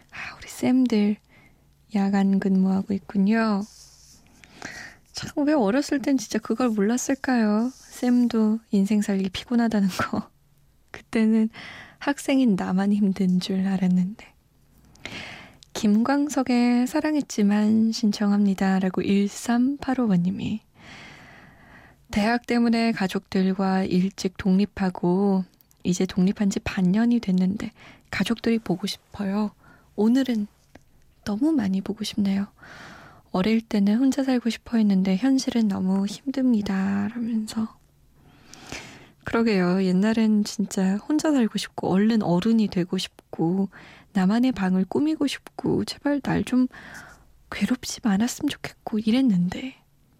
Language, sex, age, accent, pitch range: Korean, female, 20-39, native, 195-235 Hz